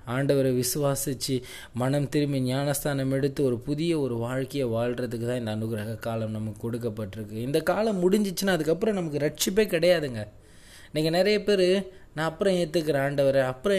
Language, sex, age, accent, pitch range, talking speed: Tamil, male, 20-39, native, 125-175 Hz, 140 wpm